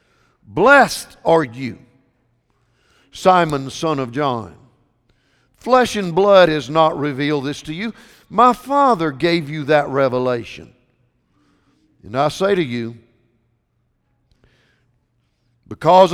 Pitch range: 125-190 Hz